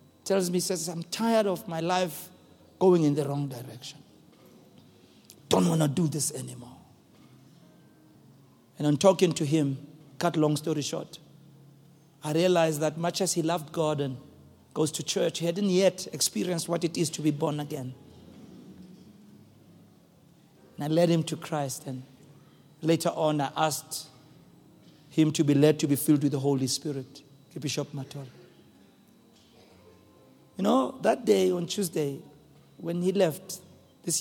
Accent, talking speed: South African, 150 wpm